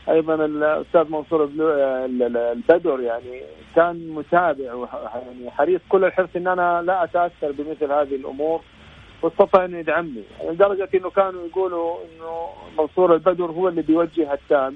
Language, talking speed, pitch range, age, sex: Arabic, 125 wpm, 150-185 Hz, 40-59, male